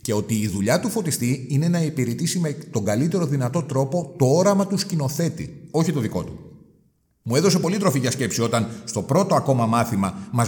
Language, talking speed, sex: Greek, 195 wpm, male